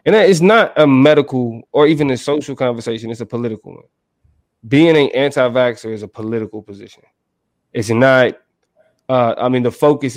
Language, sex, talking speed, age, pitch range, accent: English, male, 170 wpm, 20-39, 115-145 Hz, American